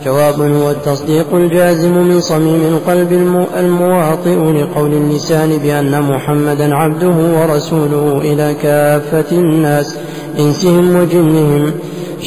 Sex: male